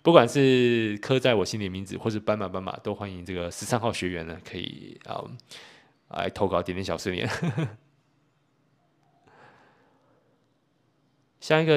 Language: Chinese